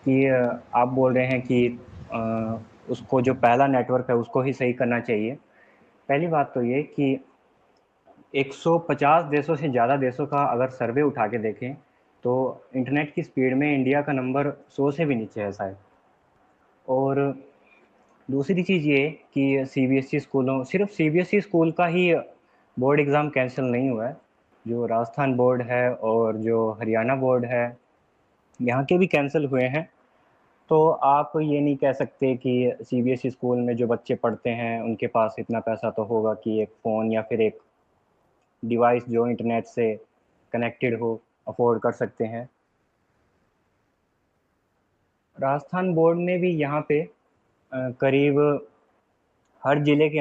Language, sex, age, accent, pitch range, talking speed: Hindi, male, 20-39, native, 120-145 Hz, 150 wpm